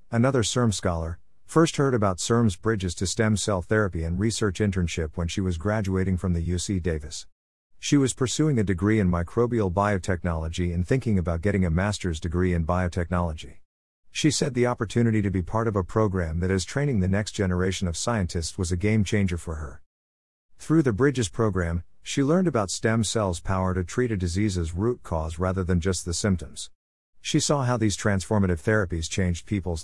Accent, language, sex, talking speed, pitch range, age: American, English, male, 185 wpm, 85-110 Hz, 50-69